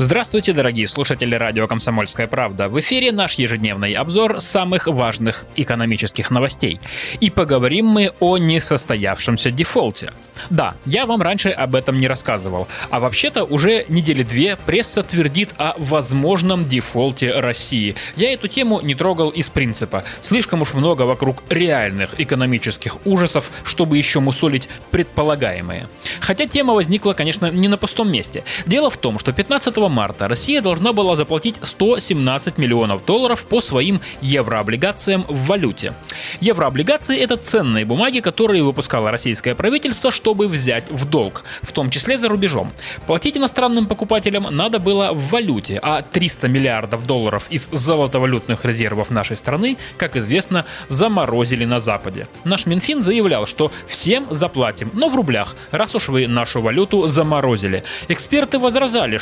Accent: native